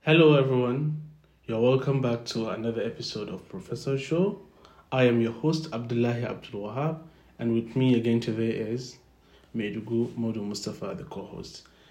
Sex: male